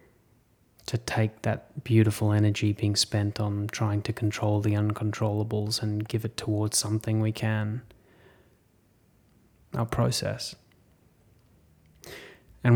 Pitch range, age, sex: 105-115 Hz, 20-39, male